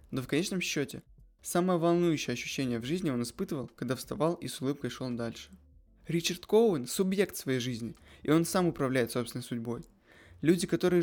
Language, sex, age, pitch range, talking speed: Russian, male, 20-39, 130-170 Hz, 170 wpm